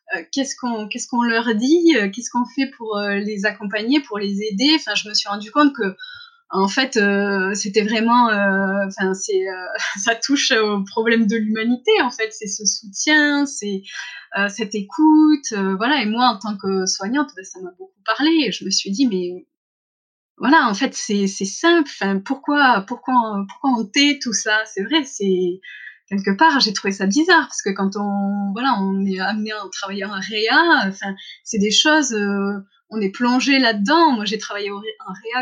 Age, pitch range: 20-39, 200-285 Hz